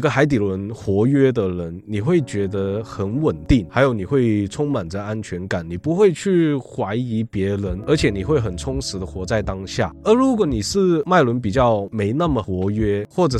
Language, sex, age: Chinese, male, 20-39